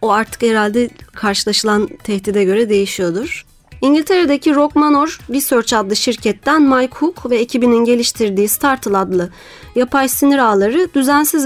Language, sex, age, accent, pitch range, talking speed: Turkish, female, 30-49, native, 220-290 Hz, 120 wpm